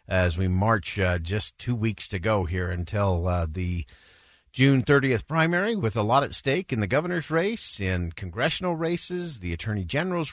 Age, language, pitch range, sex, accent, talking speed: 50-69, English, 95-155 Hz, male, American, 180 wpm